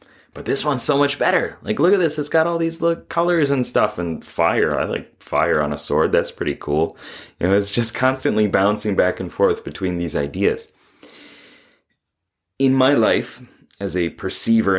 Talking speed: 185 wpm